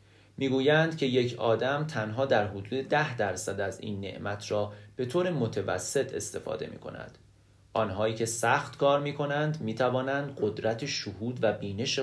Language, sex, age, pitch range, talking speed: Persian, male, 30-49, 105-135 Hz, 150 wpm